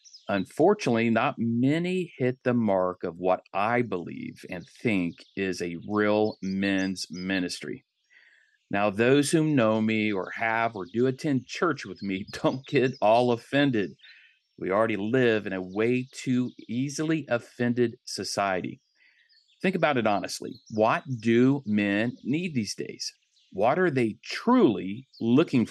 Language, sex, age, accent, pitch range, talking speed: English, male, 50-69, American, 105-145 Hz, 140 wpm